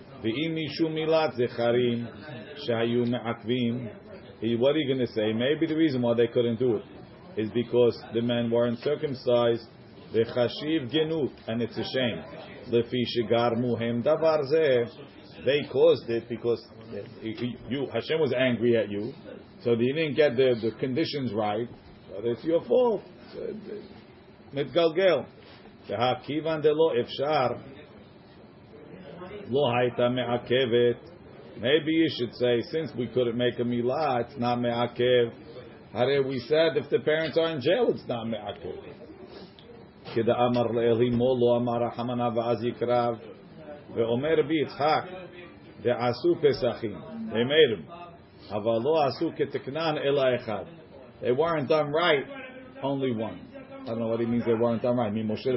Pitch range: 115-155 Hz